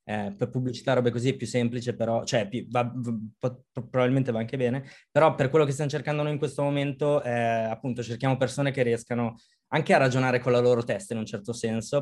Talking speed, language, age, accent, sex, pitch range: 220 wpm, Italian, 20-39, native, male, 120-140 Hz